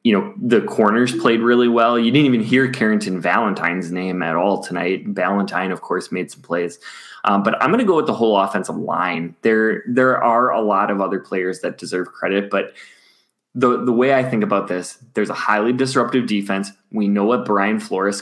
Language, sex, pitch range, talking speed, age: English, male, 95-115 Hz, 210 wpm, 20-39